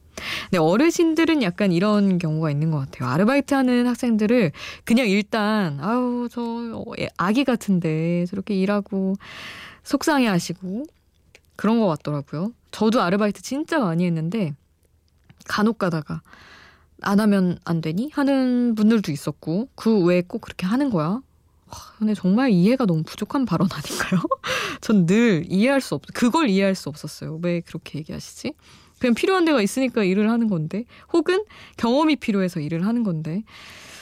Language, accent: Korean, native